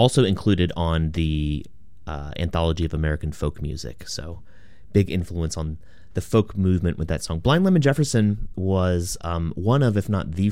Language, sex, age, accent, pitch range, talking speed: English, male, 30-49, American, 80-100 Hz, 170 wpm